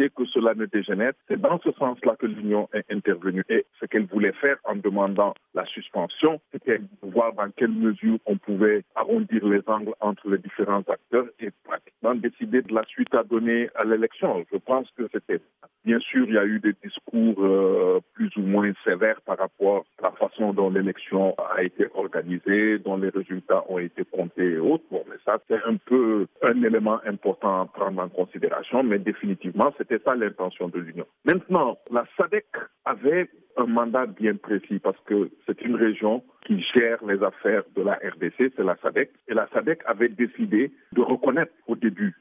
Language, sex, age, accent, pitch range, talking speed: French, male, 50-69, French, 100-120 Hz, 185 wpm